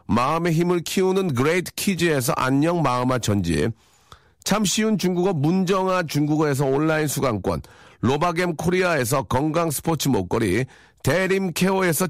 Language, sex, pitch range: Korean, male, 130-180 Hz